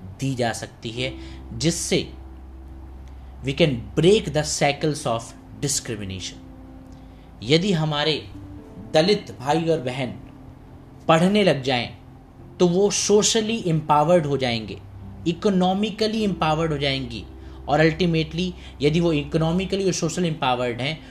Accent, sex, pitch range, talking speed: native, male, 125-165 Hz, 115 wpm